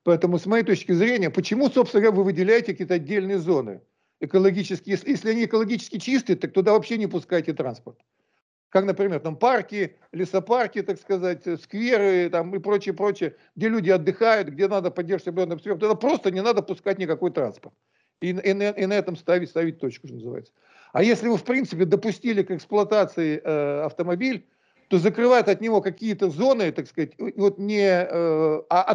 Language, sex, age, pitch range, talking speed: Russian, male, 50-69, 165-205 Hz, 170 wpm